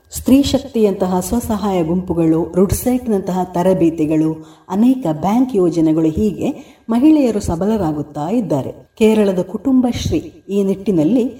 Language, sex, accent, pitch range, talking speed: Kannada, female, native, 170-240 Hz, 90 wpm